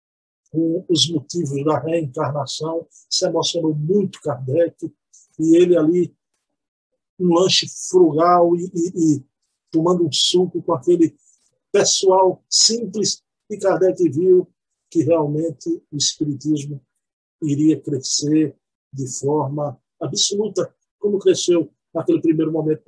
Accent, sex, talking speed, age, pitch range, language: Brazilian, male, 110 wpm, 50-69, 155-210 Hz, Portuguese